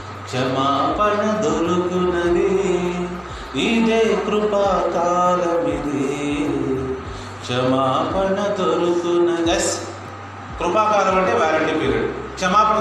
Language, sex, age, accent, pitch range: Telugu, male, 40-59, native, 135-205 Hz